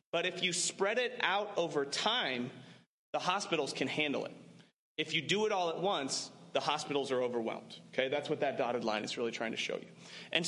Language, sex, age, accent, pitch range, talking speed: English, male, 30-49, American, 140-185 Hz, 210 wpm